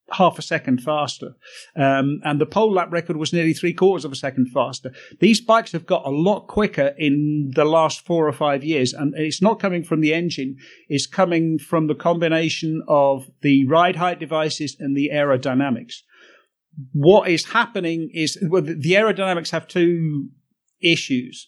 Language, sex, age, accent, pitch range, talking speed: English, male, 50-69, British, 150-180 Hz, 170 wpm